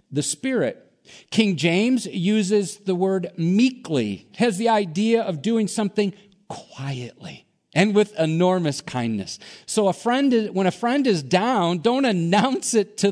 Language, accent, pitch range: English, American, 125-195 Hz